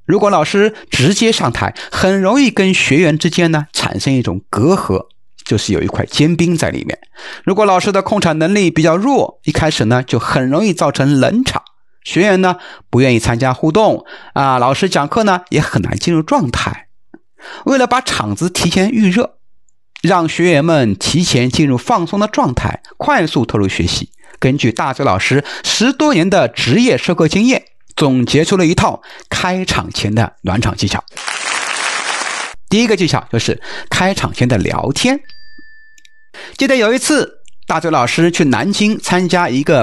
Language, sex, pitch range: Chinese, male, 130-205 Hz